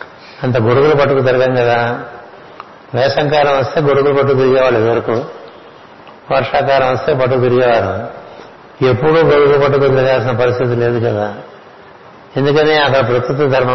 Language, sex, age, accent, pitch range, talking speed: Telugu, male, 60-79, native, 120-145 Hz, 115 wpm